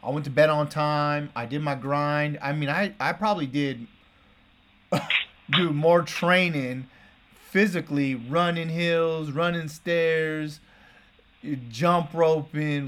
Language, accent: English, American